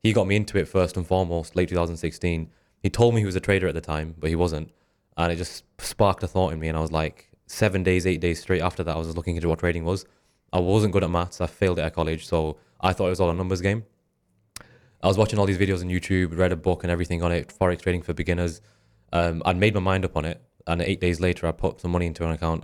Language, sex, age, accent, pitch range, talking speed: English, male, 20-39, British, 85-95 Hz, 280 wpm